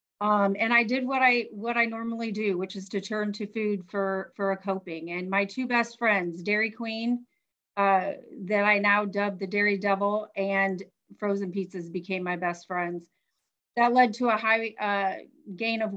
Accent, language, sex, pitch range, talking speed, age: American, English, female, 195-230 Hz, 190 wpm, 40-59